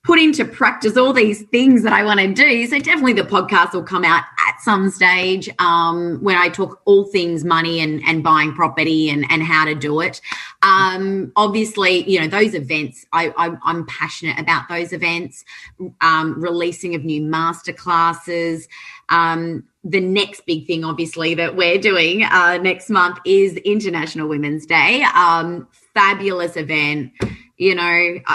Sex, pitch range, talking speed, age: female, 160-195 Hz, 165 wpm, 20-39